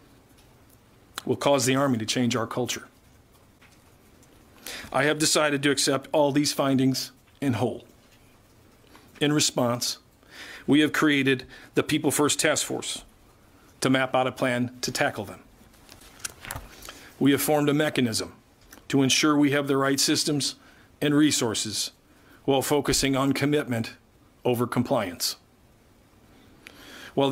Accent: American